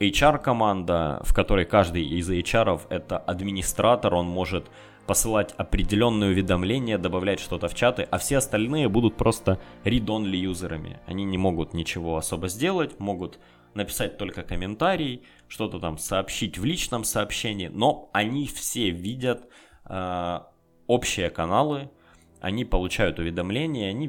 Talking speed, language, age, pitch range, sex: 125 wpm, Russian, 20-39, 85-110 Hz, male